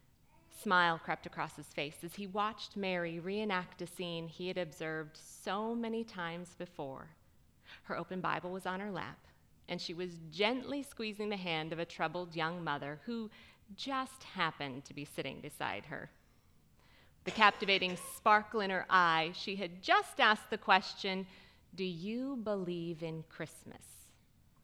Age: 30-49